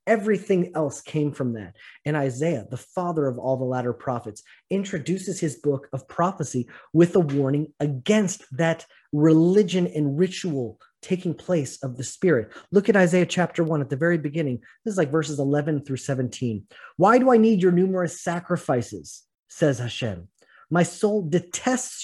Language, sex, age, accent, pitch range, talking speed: English, male, 30-49, American, 135-185 Hz, 165 wpm